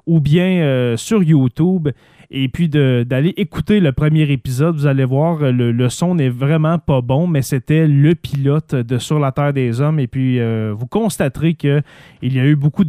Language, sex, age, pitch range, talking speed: French, male, 30-49, 140-175 Hz, 195 wpm